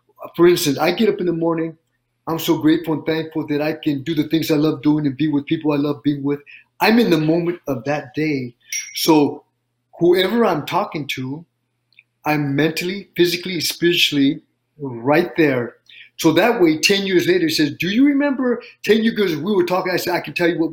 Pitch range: 145-175 Hz